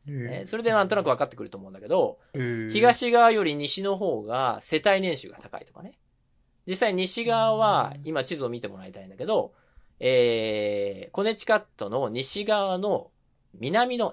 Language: Japanese